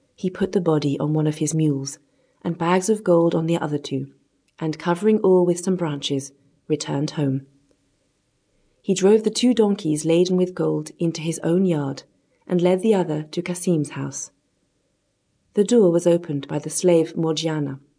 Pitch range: 145-190 Hz